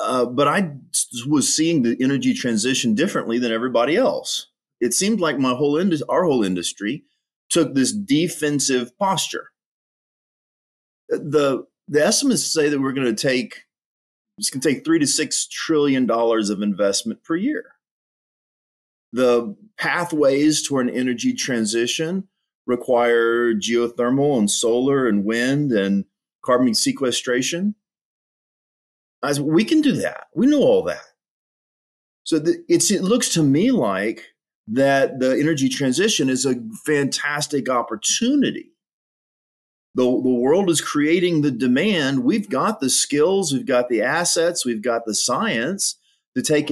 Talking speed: 135 wpm